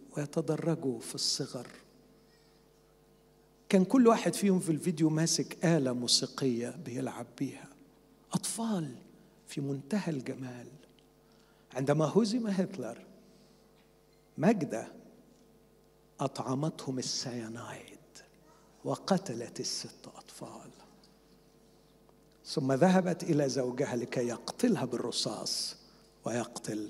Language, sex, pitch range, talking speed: Arabic, male, 135-220 Hz, 80 wpm